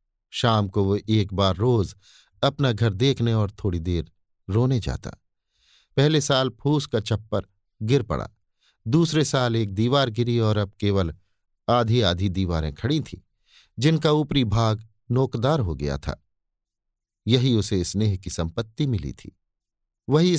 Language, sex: Hindi, male